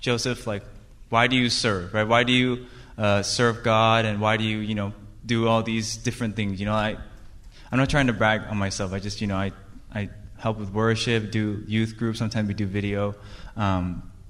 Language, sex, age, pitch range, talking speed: English, male, 20-39, 105-120 Hz, 215 wpm